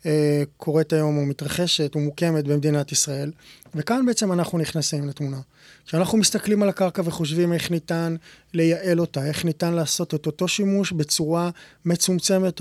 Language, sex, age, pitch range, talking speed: Hebrew, male, 20-39, 150-170 Hz, 145 wpm